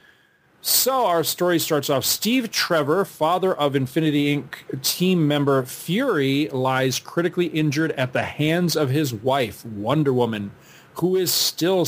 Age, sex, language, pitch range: 40-59, male, English, 130-165 Hz